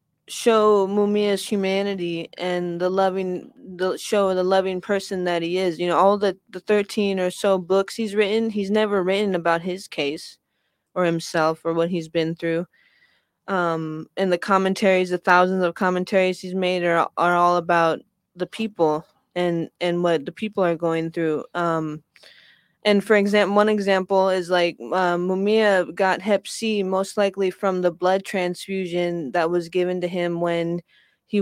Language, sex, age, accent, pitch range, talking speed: English, female, 20-39, American, 170-195 Hz, 170 wpm